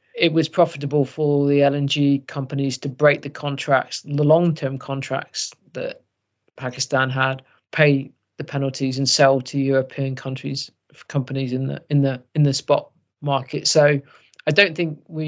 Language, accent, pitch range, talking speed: English, British, 135-155 Hz, 155 wpm